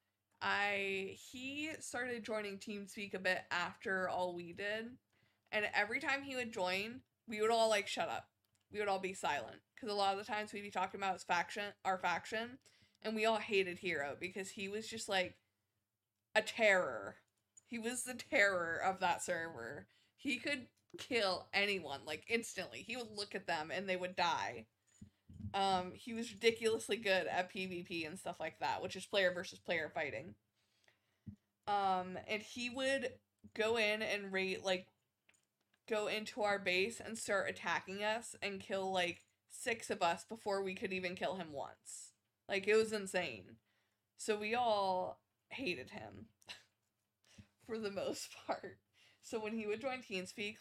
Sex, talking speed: female, 170 wpm